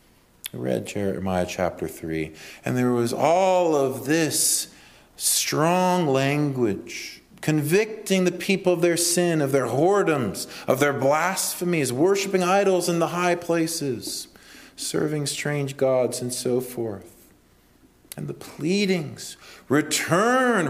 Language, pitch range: English, 100-150 Hz